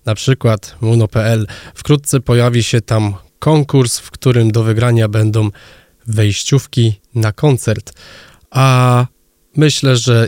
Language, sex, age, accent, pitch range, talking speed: Polish, male, 20-39, native, 110-130 Hz, 110 wpm